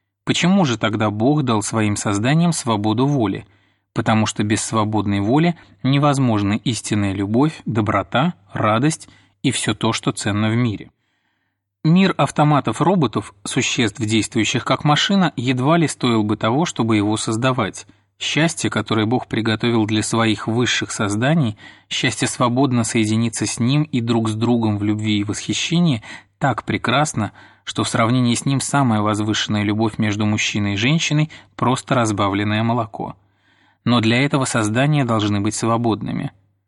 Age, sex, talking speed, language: 30-49, male, 140 wpm, Russian